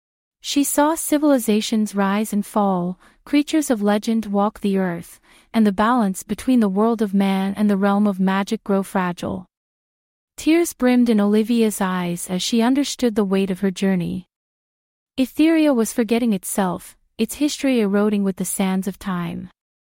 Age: 30-49